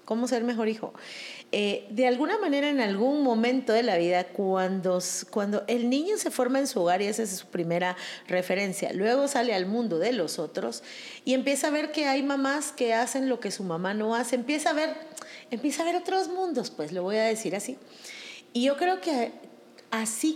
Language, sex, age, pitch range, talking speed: Spanish, female, 40-59, 205-275 Hz, 205 wpm